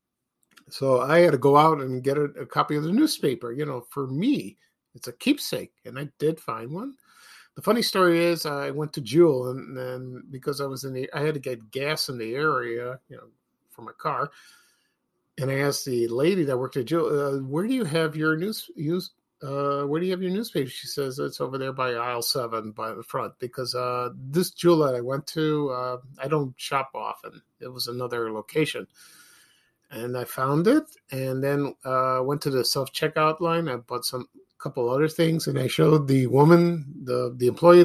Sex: male